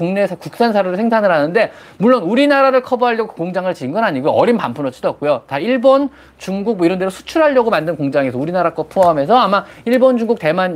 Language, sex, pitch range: Korean, male, 165-250 Hz